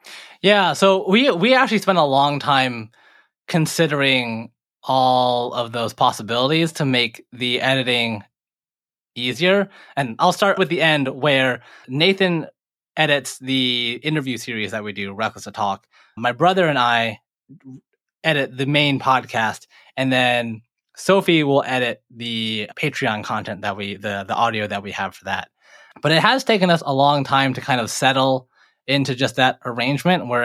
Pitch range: 120-150 Hz